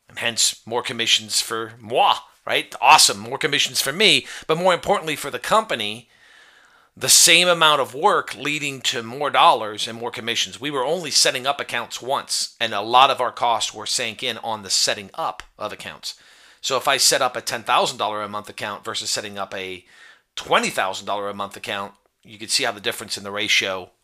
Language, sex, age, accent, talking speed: English, male, 40-59, American, 195 wpm